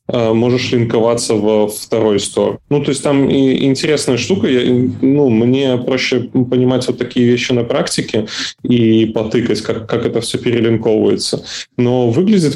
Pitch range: 110-125 Hz